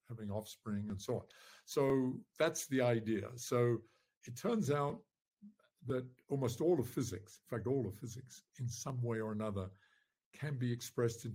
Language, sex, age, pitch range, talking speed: English, male, 60-79, 105-125 Hz, 170 wpm